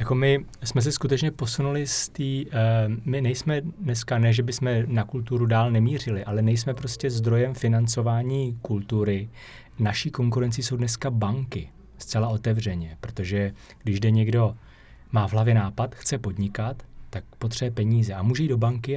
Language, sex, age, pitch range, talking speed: Czech, male, 30-49, 110-125 Hz, 160 wpm